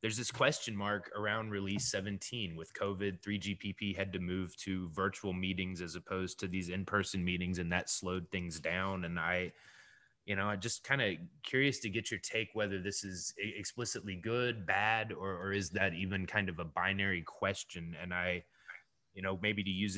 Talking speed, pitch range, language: 190 wpm, 90-105 Hz, English